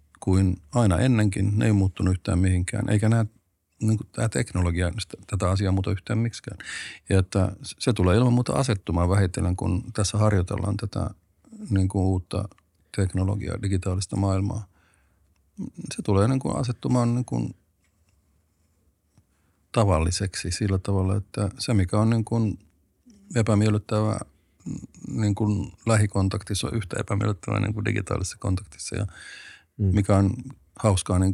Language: Finnish